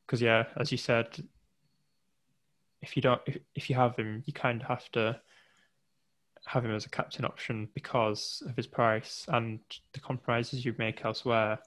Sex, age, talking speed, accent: male, 10-29, 175 wpm, British